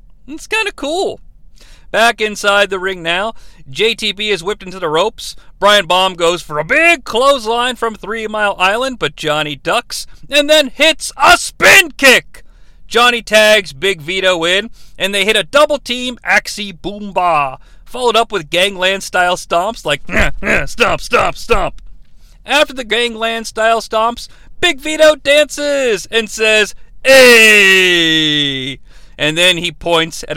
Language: English